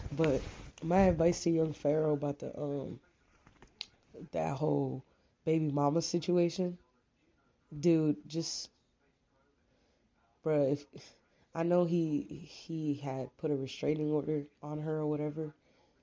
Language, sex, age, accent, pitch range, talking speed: English, female, 20-39, American, 140-175 Hz, 115 wpm